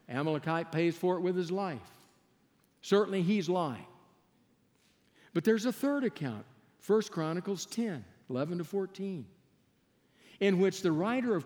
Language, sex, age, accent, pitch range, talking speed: English, male, 60-79, American, 150-205 Hz, 135 wpm